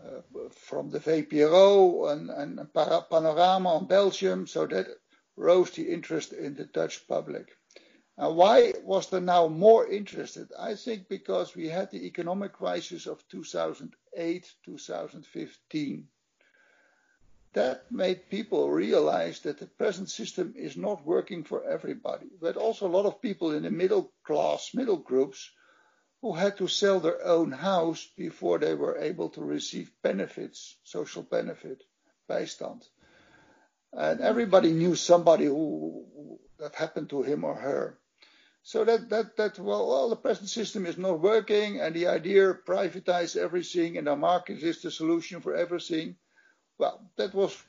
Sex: male